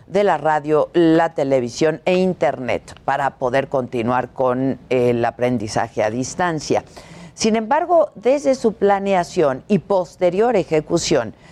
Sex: female